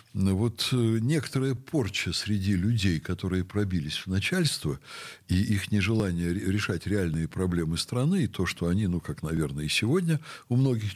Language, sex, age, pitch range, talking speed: Russian, male, 60-79, 90-120 Hz, 155 wpm